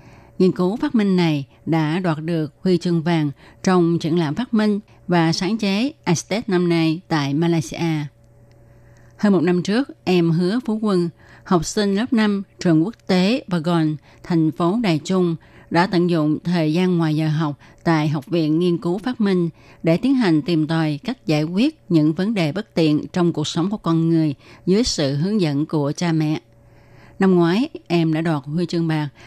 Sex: female